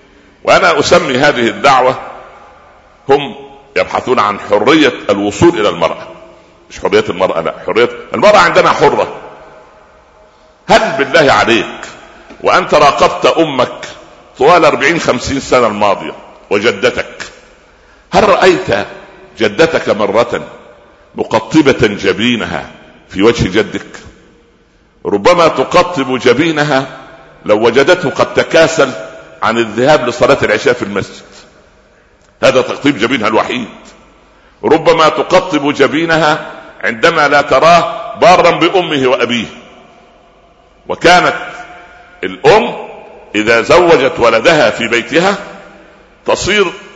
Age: 60-79